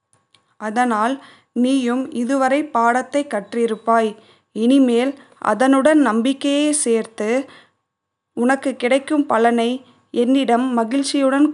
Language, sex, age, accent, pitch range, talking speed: Tamil, female, 20-39, native, 230-270 Hz, 75 wpm